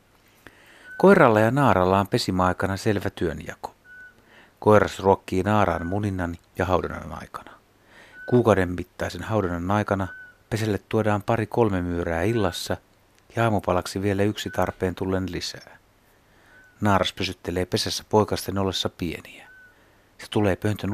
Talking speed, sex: 115 wpm, male